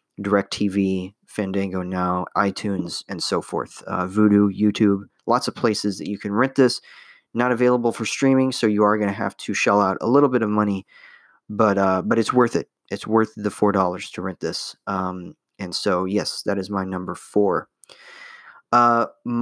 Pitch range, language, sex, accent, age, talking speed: 100-125 Hz, English, male, American, 30-49, 180 wpm